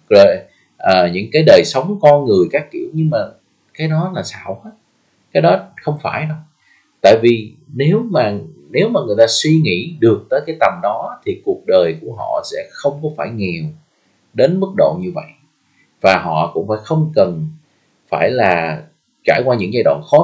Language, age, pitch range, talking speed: Vietnamese, 30-49, 110-165 Hz, 195 wpm